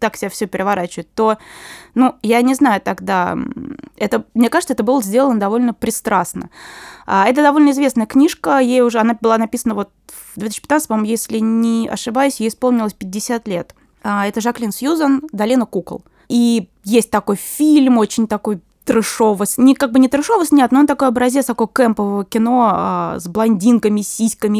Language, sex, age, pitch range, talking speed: Russian, female, 20-39, 220-270 Hz, 160 wpm